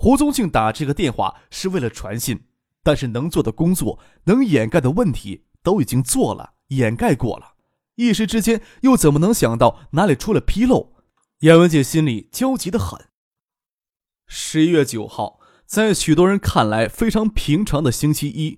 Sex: male